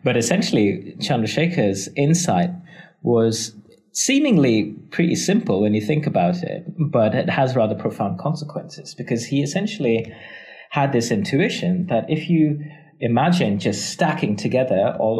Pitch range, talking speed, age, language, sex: 110-175 Hz, 130 wpm, 30-49, English, male